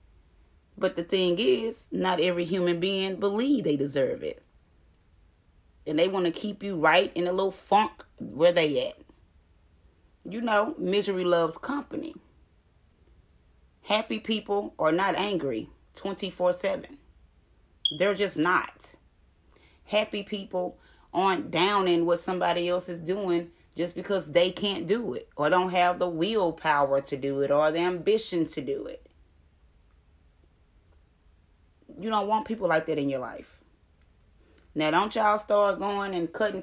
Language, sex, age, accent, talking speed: English, female, 30-49, American, 145 wpm